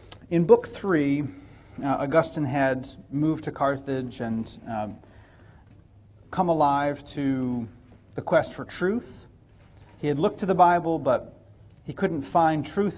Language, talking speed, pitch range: English, 135 wpm, 115-150 Hz